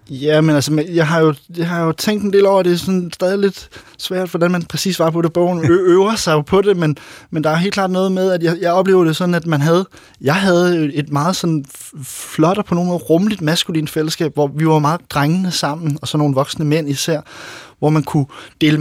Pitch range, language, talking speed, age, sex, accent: 135-165 Hz, Danish, 245 wpm, 20-39, male, native